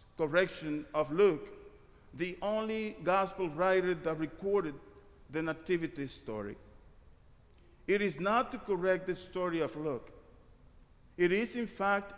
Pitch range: 160-200 Hz